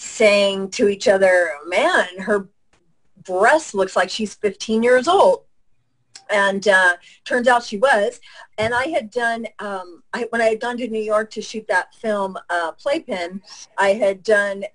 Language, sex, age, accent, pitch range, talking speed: English, female, 40-59, American, 180-225 Hz, 165 wpm